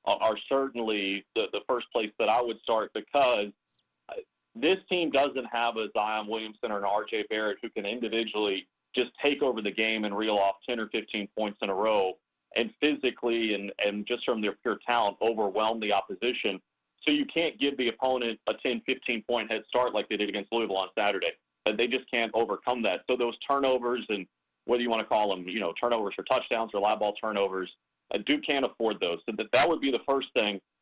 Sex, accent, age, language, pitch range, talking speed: male, American, 30-49, English, 105-125 Hz, 210 wpm